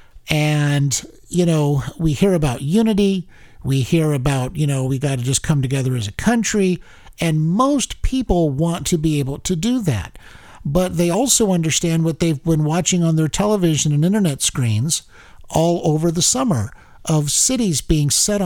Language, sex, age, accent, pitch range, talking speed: English, male, 50-69, American, 140-190 Hz, 170 wpm